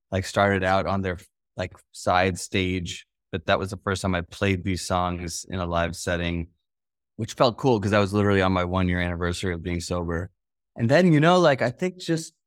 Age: 20-39